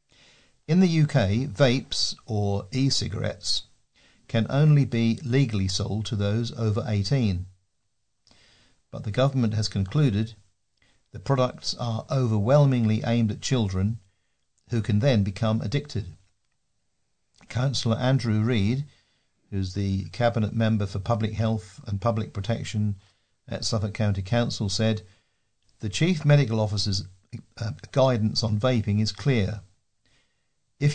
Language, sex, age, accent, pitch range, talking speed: English, male, 50-69, British, 105-130 Hz, 120 wpm